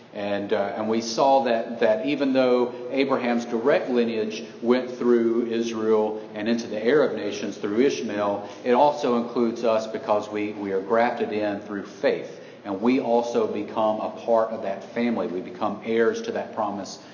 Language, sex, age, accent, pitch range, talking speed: English, male, 40-59, American, 110-125 Hz, 170 wpm